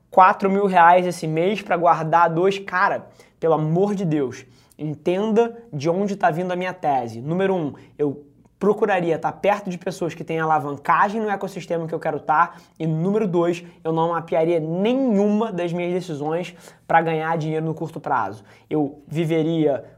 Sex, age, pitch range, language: male, 20-39, 160-195 Hz, Portuguese